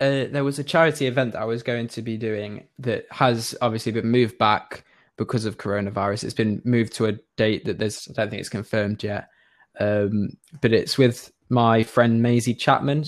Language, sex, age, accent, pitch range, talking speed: English, male, 10-29, British, 110-125 Hz, 200 wpm